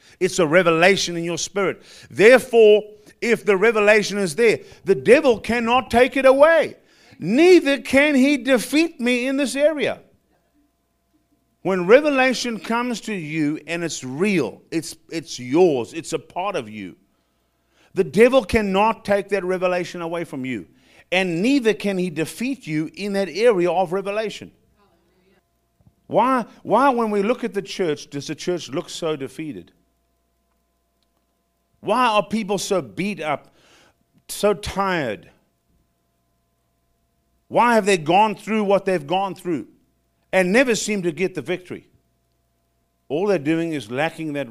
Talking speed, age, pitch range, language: 145 wpm, 50-69, 145-220 Hz, English